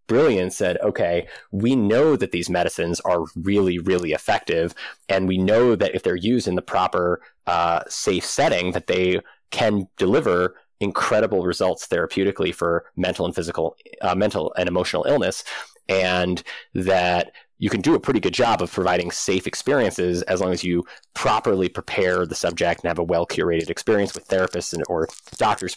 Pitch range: 85-95 Hz